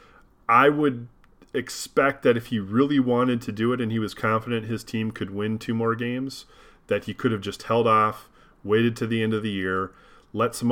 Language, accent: English, American